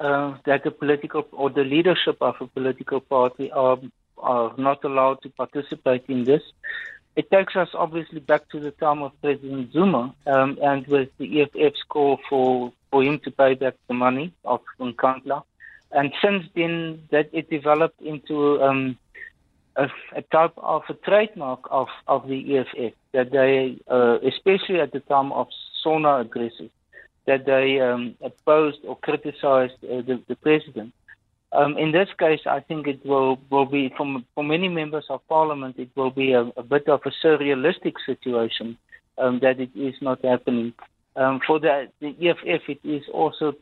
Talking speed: 170 wpm